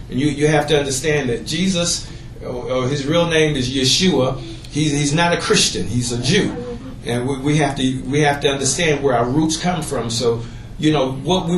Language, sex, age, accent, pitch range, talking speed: English, male, 40-59, American, 130-155 Hz, 210 wpm